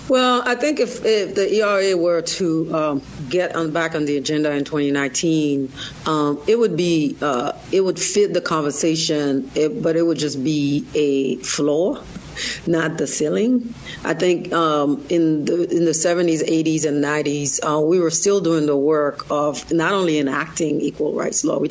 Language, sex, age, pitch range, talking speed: English, female, 40-59, 145-165 Hz, 180 wpm